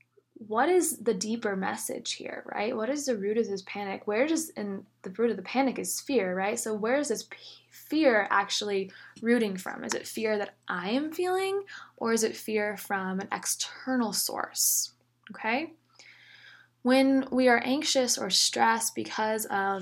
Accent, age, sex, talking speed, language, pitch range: American, 10-29, female, 175 wpm, English, 195-245 Hz